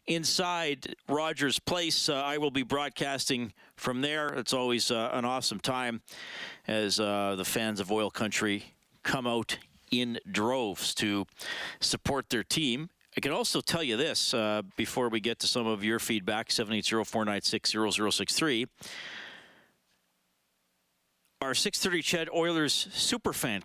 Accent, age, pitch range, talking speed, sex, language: American, 40-59, 110-145 Hz, 130 wpm, male, English